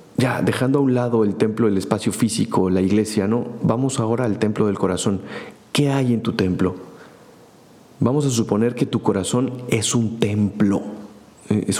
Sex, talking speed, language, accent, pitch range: male, 175 wpm, Spanish, Mexican, 95-120 Hz